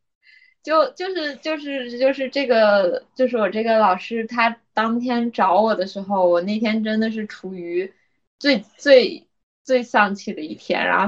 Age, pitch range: 20-39, 200-285 Hz